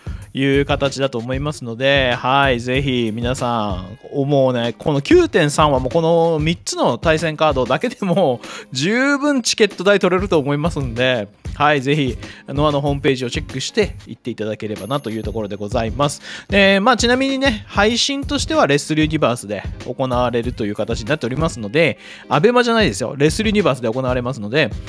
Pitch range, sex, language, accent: 115-160 Hz, male, Japanese, native